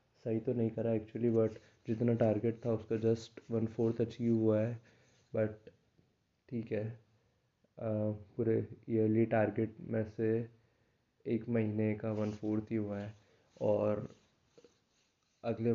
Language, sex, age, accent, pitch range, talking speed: Hindi, male, 20-39, native, 105-115 Hz, 130 wpm